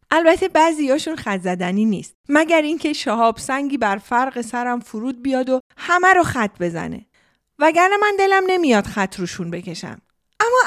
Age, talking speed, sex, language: 30-49, 150 wpm, female, Persian